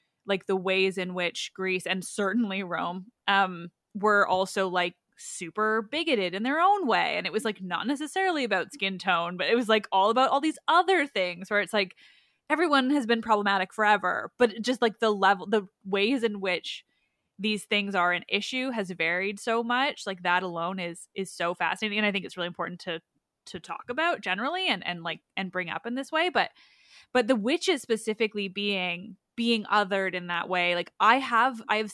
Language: English